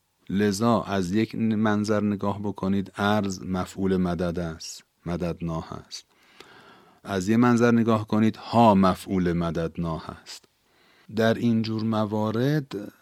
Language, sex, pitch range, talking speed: Persian, male, 90-110 Hz, 115 wpm